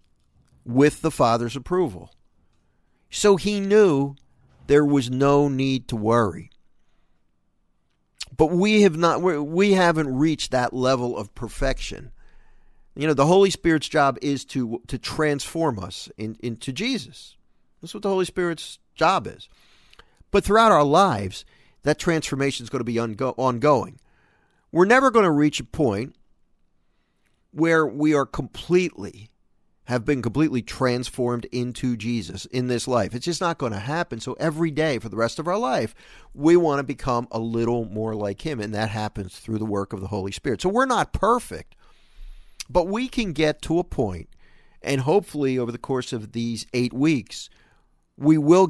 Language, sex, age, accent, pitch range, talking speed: English, male, 50-69, American, 115-155 Hz, 165 wpm